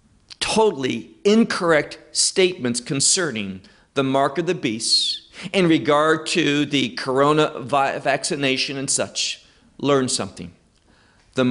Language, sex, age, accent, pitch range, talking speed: English, male, 50-69, American, 130-190 Hz, 105 wpm